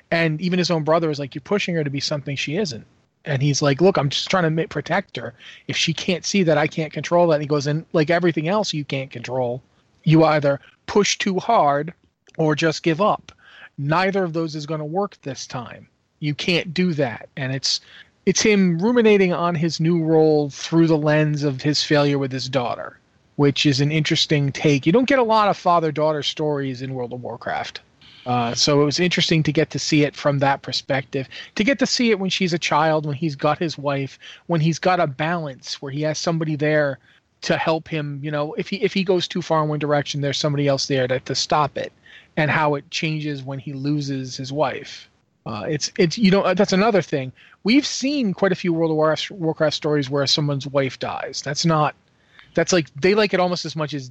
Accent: American